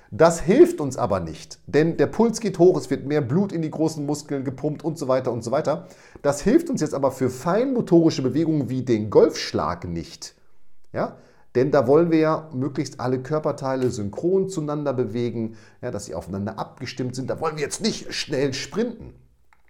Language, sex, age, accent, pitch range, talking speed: German, male, 40-59, German, 115-160 Hz, 185 wpm